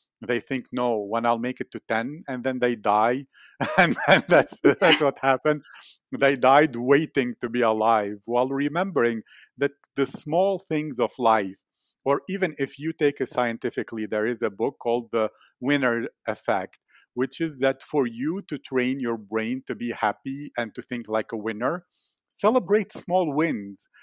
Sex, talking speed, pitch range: male, 170 wpm, 120-150 Hz